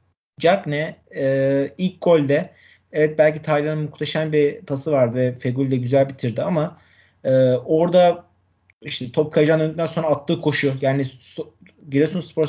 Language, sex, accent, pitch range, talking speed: Turkish, male, native, 140-170 Hz, 145 wpm